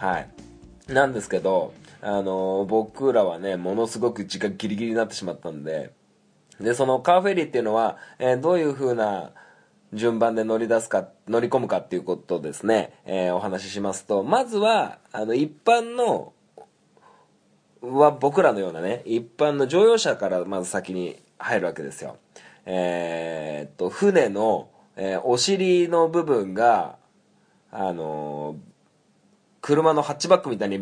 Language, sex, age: Japanese, male, 20-39